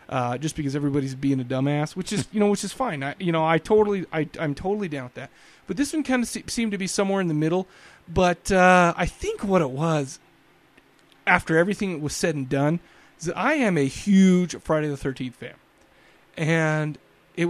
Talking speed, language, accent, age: 215 wpm, English, American, 30-49